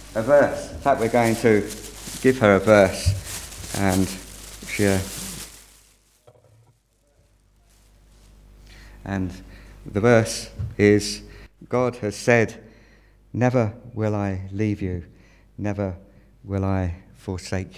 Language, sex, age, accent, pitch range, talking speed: English, male, 50-69, British, 95-110 Hz, 100 wpm